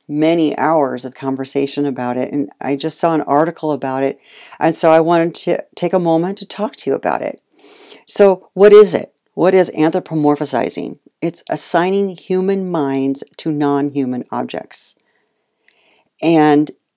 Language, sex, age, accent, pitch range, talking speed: English, female, 50-69, American, 140-175 Hz, 150 wpm